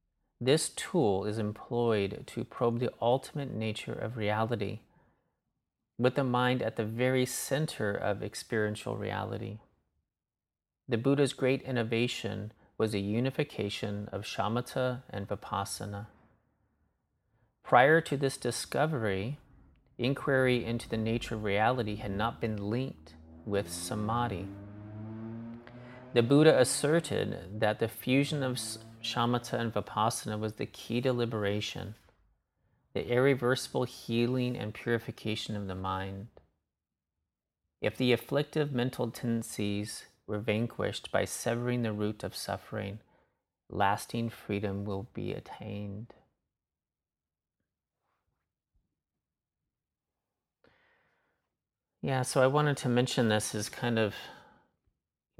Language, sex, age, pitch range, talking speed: English, male, 30-49, 105-125 Hz, 110 wpm